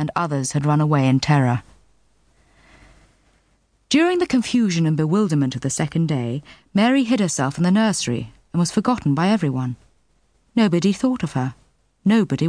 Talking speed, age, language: 155 wpm, 40-59, English